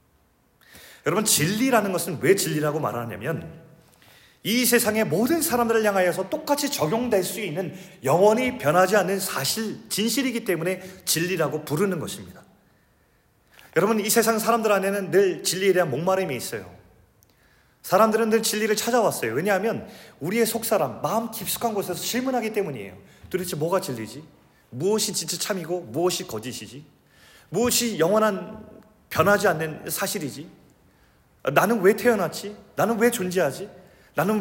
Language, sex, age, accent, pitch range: Korean, male, 30-49, native, 170-225 Hz